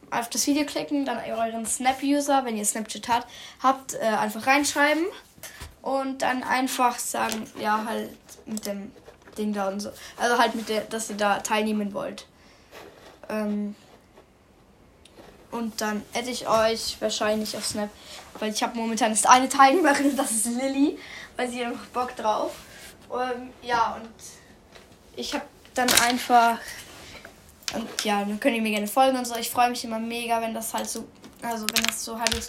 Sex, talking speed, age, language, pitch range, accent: female, 170 wpm, 10-29, German, 215-250 Hz, German